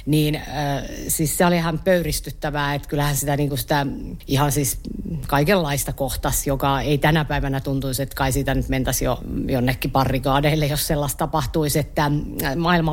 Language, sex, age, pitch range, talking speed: Finnish, female, 50-69, 140-175 Hz, 160 wpm